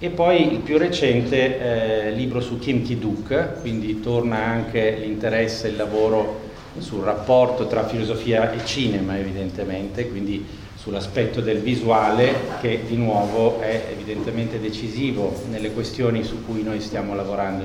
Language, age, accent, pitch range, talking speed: Italian, 40-59, native, 105-125 Hz, 140 wpm